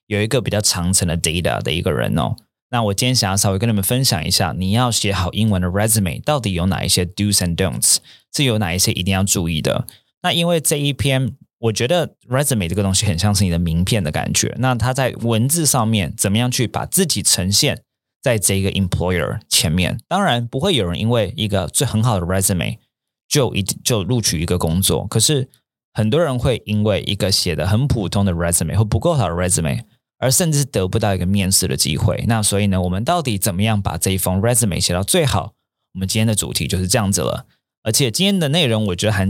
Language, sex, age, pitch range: Chinese, male, 20-39, 95-120 Hz